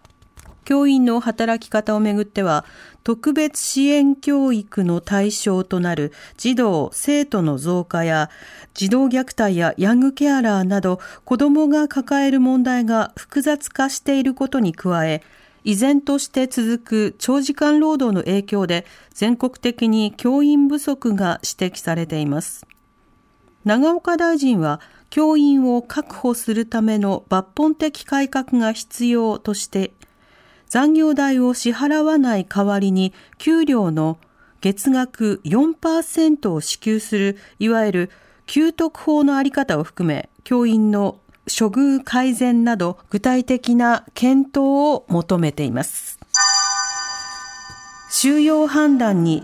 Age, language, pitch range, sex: 40-59, Japanese, 190-275 Hz, female